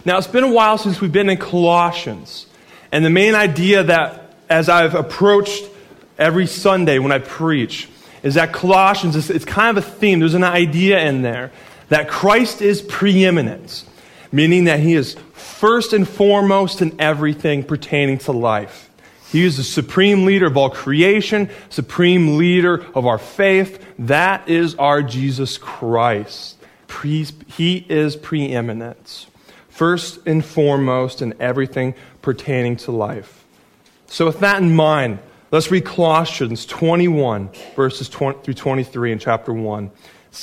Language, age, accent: English, 20-39, American